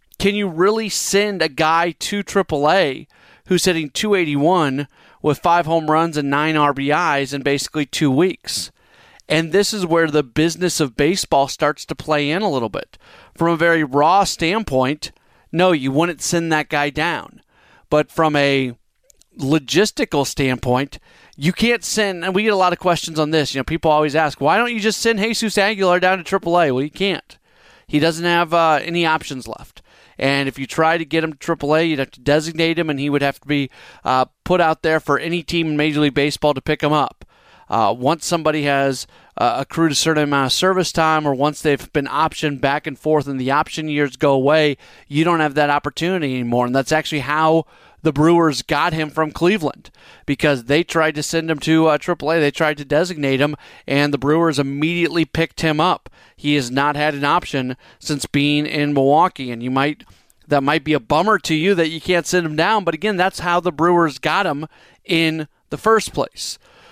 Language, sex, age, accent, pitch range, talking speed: English, male, 40-59, American, 145-170 Hz, 205 wpm